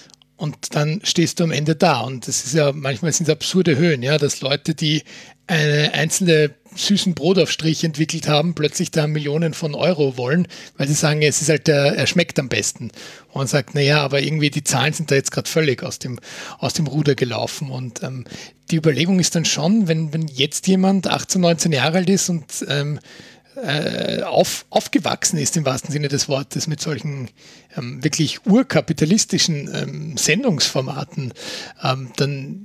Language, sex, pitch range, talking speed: German, male, 140-170 Hz, 180 wpm